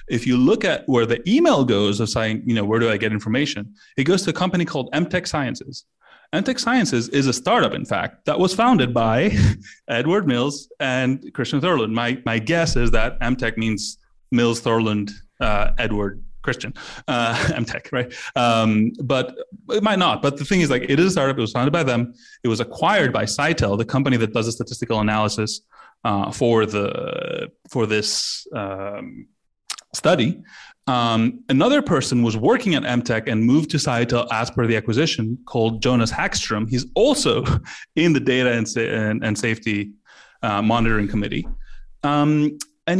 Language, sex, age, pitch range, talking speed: English, male, 30-49, 115-150 Hz, 175 wpm